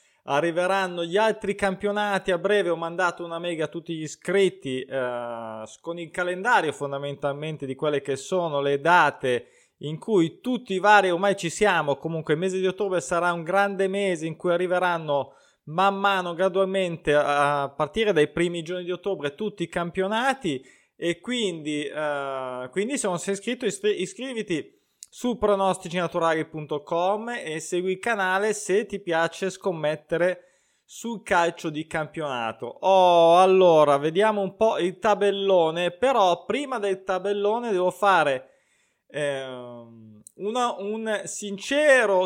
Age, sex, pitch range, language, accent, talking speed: 20-39, male, 165-220 Hz, Italian, native, 140 wpm